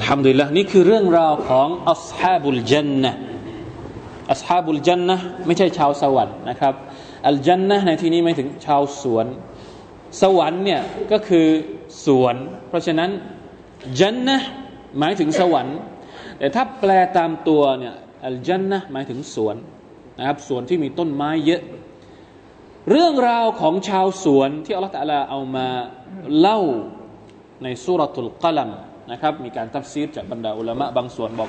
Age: 20-39